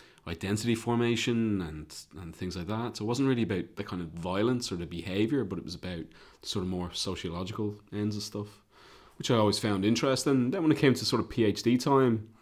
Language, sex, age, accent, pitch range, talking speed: English, male, 30-49, British, 95-115 Hz, 215 wpm